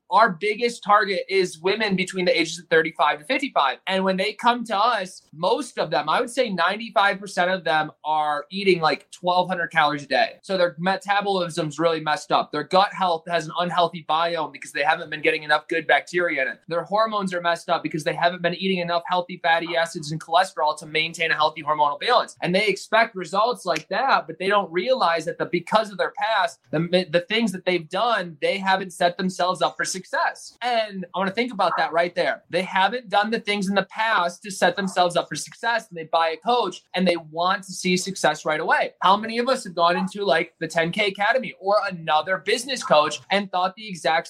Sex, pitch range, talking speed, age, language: male, 170-200 Hz, 220 wpm, 20-39, English